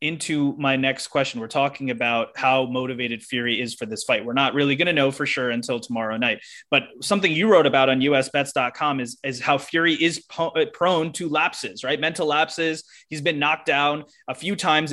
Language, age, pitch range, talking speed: English, 20-39, 130-150 Hz, 200 wpm